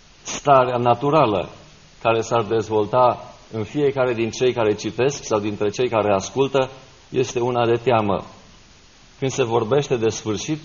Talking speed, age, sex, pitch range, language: 140 wpm, 50-69, male, 115-135 Hz, Romanian